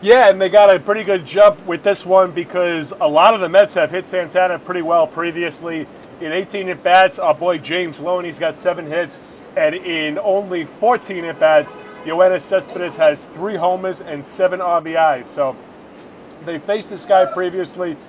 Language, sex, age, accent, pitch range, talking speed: English, male, 30-49, American, 170-200 Hz, 175 wpm